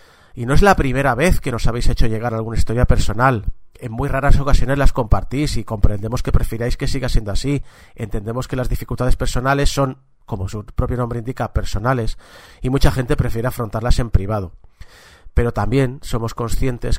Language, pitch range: Spanish, 115-140 Hz